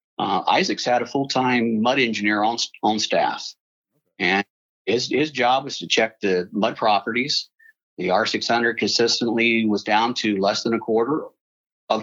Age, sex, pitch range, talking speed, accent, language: 50-69, male, 105-125 Hz, 155 wpm, American, English